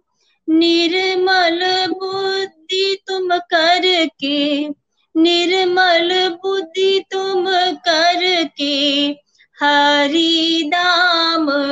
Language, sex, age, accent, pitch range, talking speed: Hindi, female, 20-39, native, 290-355 Hz, 55 wpm